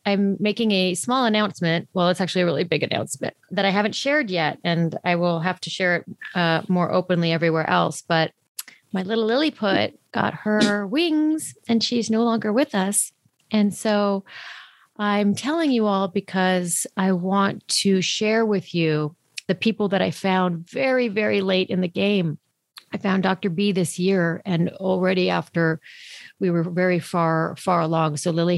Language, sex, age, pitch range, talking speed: English, female, 40-59, 160-195 Hz, 175 wpm